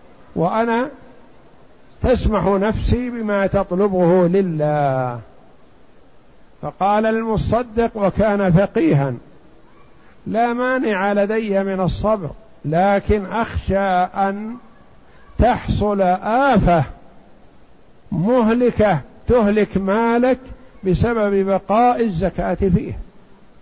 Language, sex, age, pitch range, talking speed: Arabic, male, 50-69, 175-225 Hz, 70 wpm